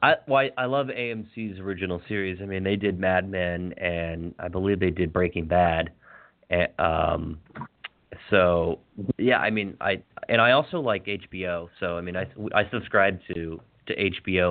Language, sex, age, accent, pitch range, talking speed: English, male, 30-49, American, 90-105 Hz, 170 wpm